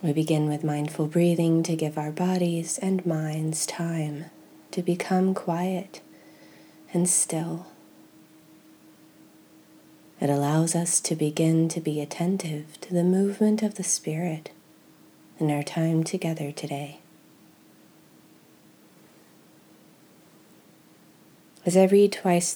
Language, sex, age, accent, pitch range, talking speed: English, female, 30-49, American, 155-180 Hz, 105 wpm